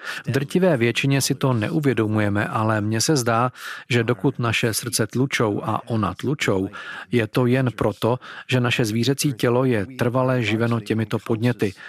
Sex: male